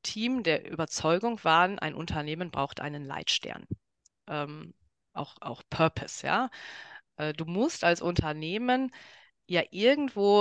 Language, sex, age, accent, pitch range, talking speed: German, female, 30-49, German, 160-220 Hz, 120 wpm